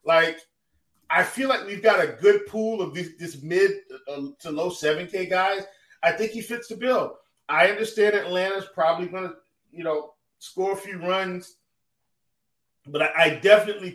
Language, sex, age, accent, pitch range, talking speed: English, male, 30-49, American, 165-215 Hz, 165 wpm